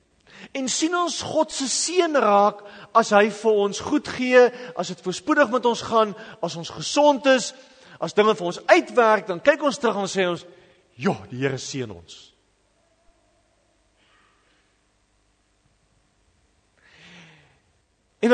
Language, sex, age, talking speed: English, male, 50-69, 130 wpm